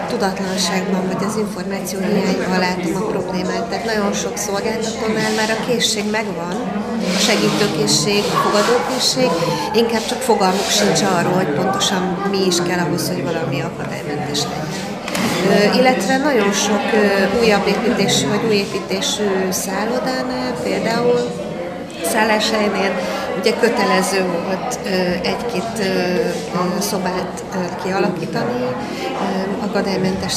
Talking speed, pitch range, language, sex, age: 105 wpm, 190-220 Hz, Hungarian, female, 30-49